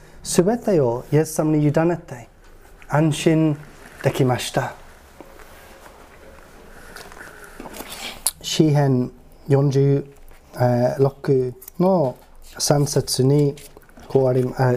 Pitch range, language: 130-175 Hz, Japanese